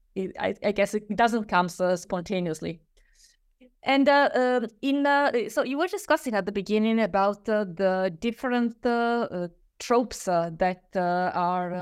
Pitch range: 180-225 Hz